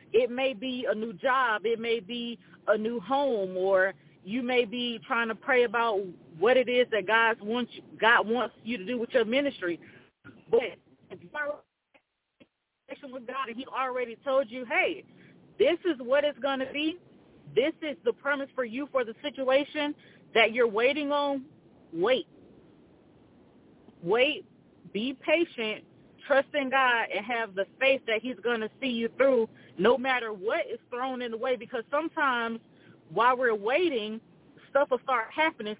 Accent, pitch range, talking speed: American, 230-295 Hz, 170 wpm